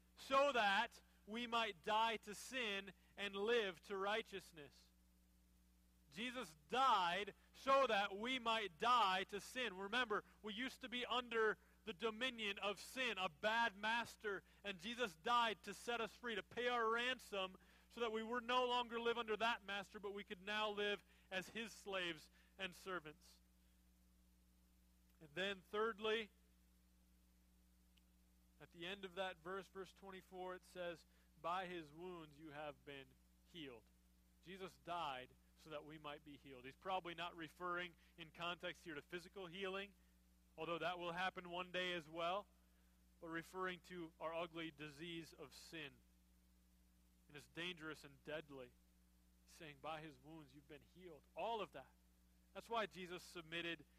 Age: 40-59